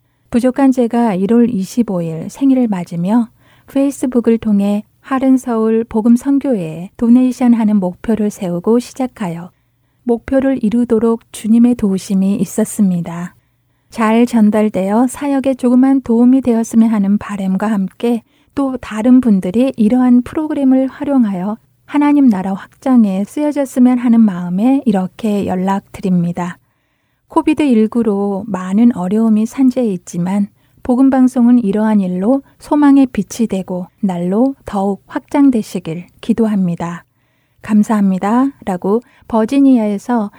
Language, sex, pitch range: Korean, female, 195-250 Hz